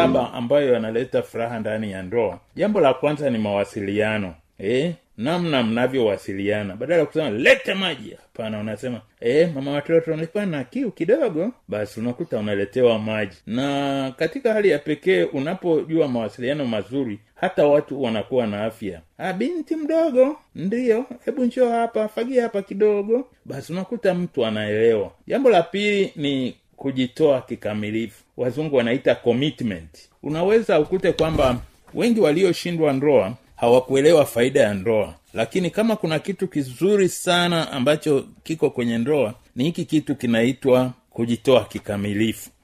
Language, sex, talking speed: Swahili, male, 135 wpm